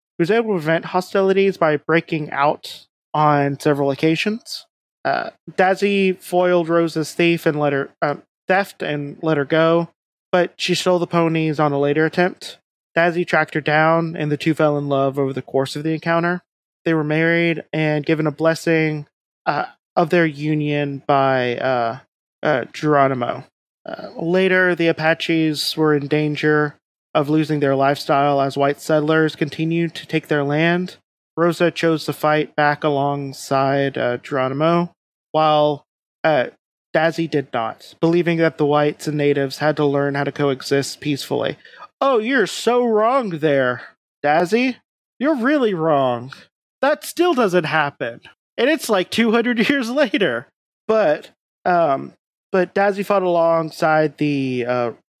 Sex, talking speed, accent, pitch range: male, 150 wpm, American, 145-175 Hz